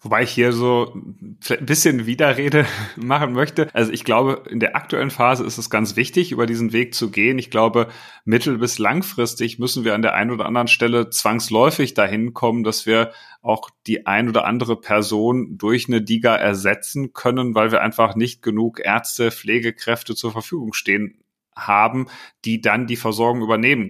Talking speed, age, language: 175 wpm, 30-49, German